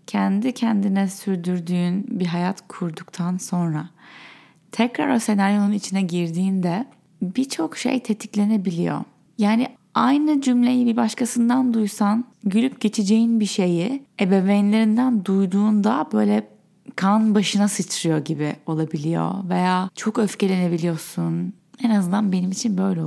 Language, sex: Turkish, female